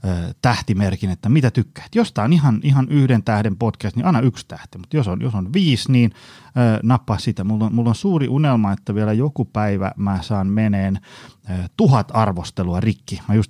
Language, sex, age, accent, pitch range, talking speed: Finnish, male, 30-49, native, 100-130 Hz, 200 wpm